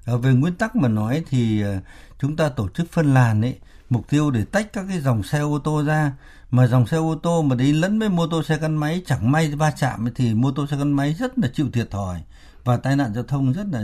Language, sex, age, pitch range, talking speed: Vietnamese, male, 60-79, 115-160 Hz, 260 wpm